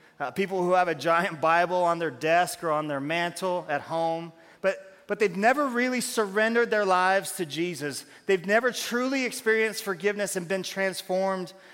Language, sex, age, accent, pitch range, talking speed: English, male, 30-49, American, 170-205 Hz, 175 wpm